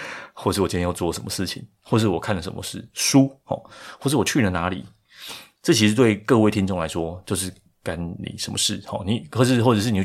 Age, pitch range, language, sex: 20-39, 90-115 Hz, Chinese, male